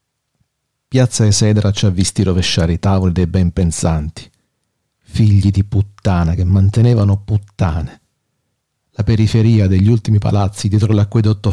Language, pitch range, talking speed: Italian, 95-115 Hz, 125 wpm